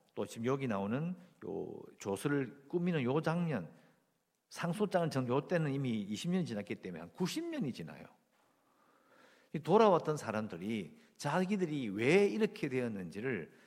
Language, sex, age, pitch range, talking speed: English, male, 50-69, 120-185 Hz, 115 wpm